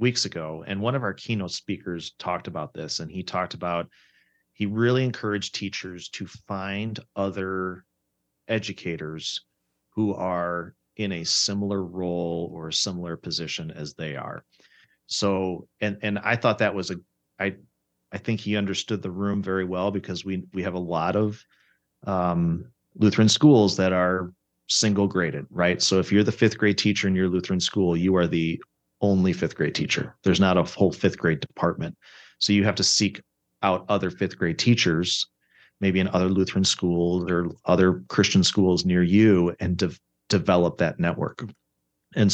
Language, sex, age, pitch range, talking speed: English, male, 30-49, 85-105 Hz, 170 wpm